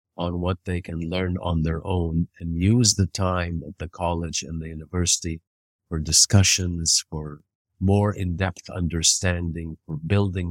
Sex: male